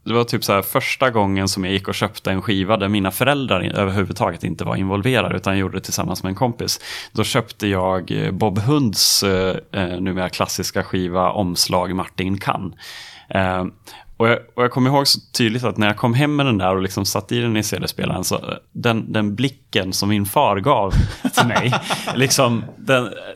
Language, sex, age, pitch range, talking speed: Swedish, male, 30-49, 100-125 Hz, 195 wpm